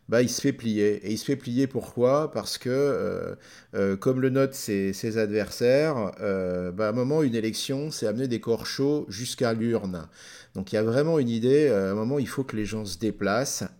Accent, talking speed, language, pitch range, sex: French, 225 wpm, French, 100-130 Hz, male